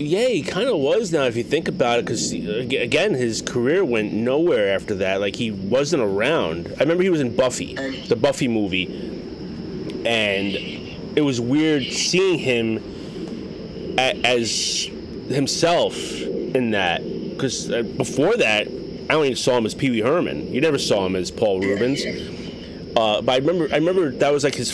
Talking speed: 170 wpm